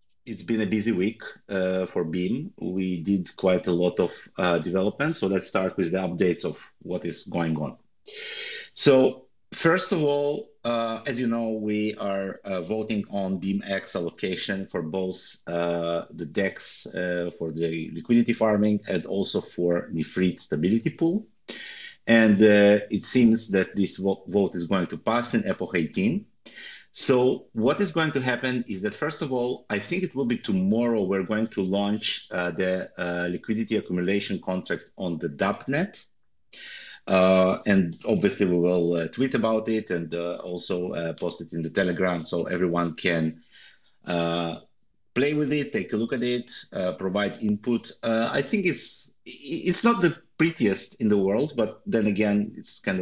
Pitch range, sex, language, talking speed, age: 90-120 Hz, male, English, 175 wpm, 30-49